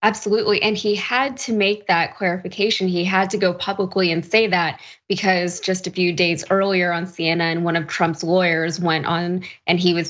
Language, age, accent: English, 20-39, American